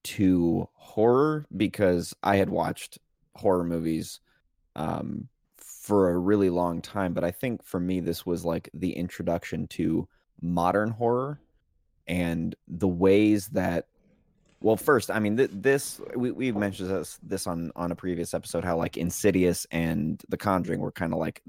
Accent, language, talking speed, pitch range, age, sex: American, English, 155 wpm, 85-105 Hz, 20-39, male